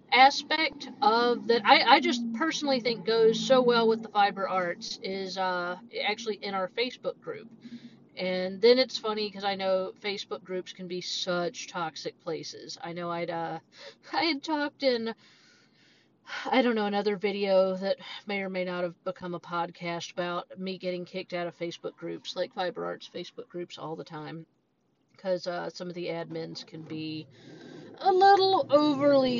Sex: female